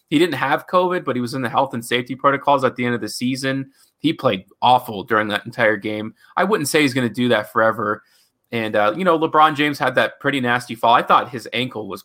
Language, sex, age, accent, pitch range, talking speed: English, male, 20-39, American, 110-145 Hz, 255 wpm